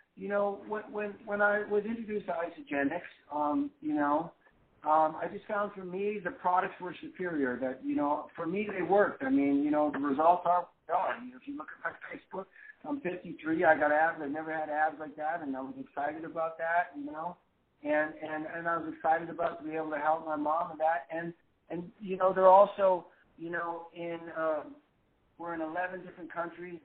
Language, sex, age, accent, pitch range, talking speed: English, male, 50-69, American, 155-200 Hz, 215 wpm